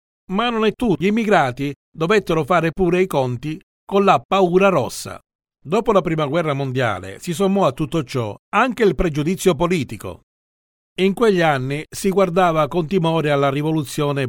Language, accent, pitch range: Italian, native, 130-185 Hz